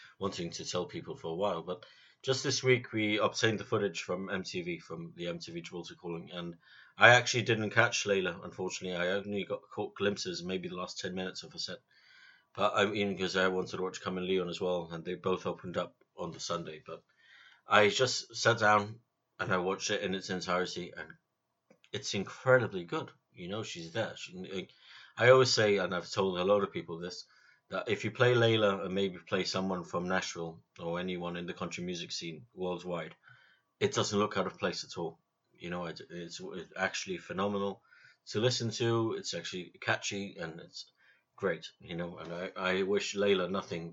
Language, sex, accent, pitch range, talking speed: English, male, British, 90-115 Hz, 195 wpm